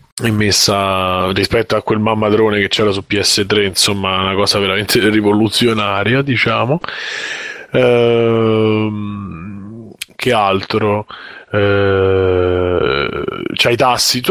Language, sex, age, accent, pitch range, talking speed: Italian, male, 20-39, native, 100-115 Hz, 90 wpm